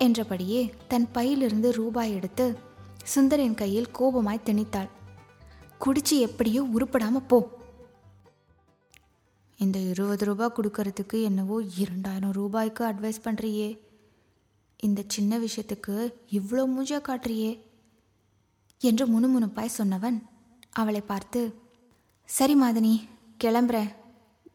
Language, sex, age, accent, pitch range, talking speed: Tamil, female, 20-39, native, 205-245 Hz, 90 wpm